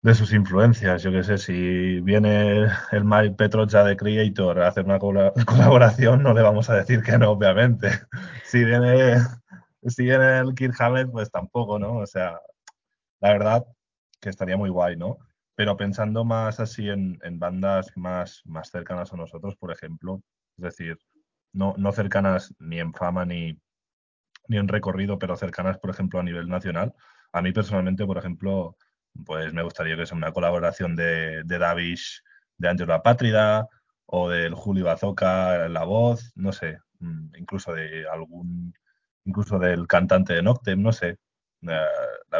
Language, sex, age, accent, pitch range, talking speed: Spanish, male, 20-39, Spanish, 85-110 Hz, 165 wpm